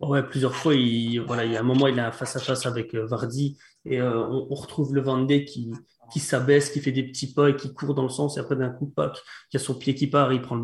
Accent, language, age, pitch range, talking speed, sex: French, French, 20-39, 130-145 Hz, 305 wpm, male